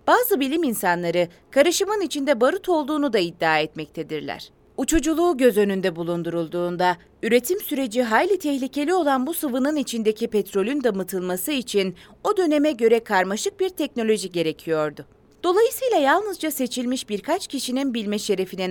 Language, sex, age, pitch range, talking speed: Turkish, female, 30-49, 190-305 Hz, 125 wpm